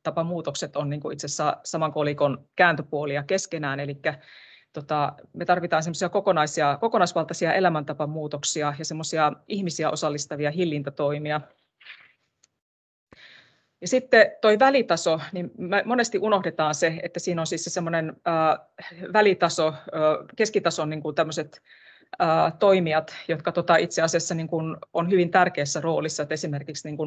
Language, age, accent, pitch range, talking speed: Finnish, 30-49, native, 150-175 Hz, 100 wpm